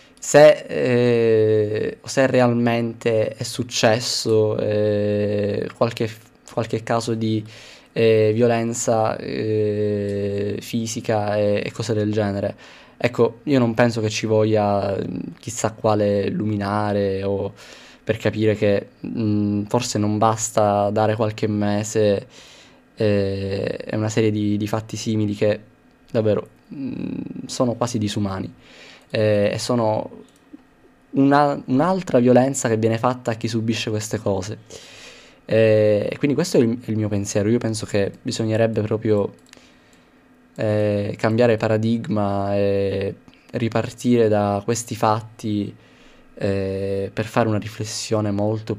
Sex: male